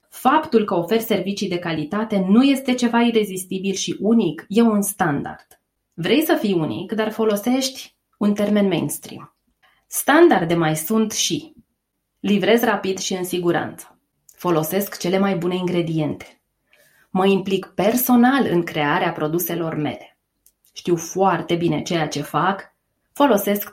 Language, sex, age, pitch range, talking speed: Romanian, female, 20-39, 180-230 Hz, 130 wpm